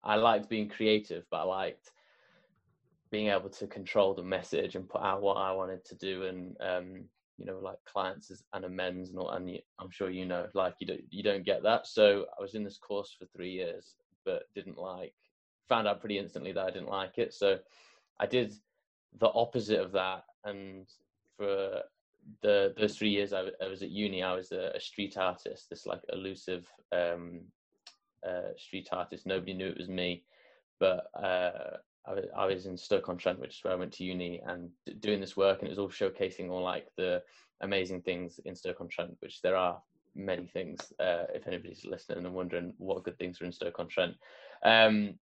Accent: British